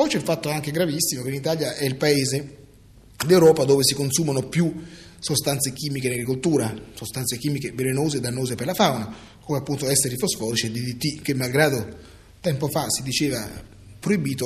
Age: 30-49